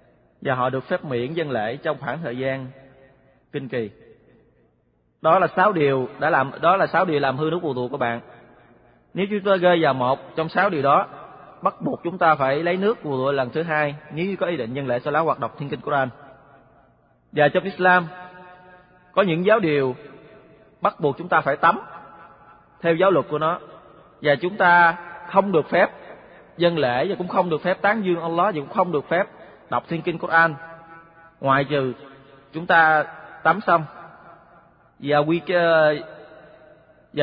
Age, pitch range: 20-39, 140-175 Hz